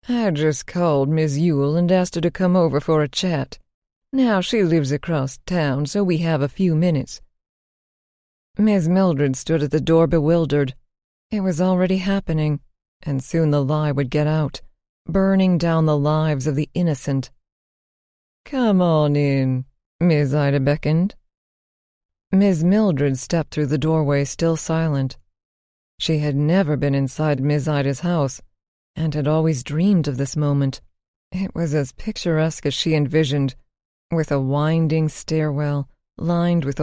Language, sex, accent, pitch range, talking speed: English, female, American, 140-165 Hz, 150 wpm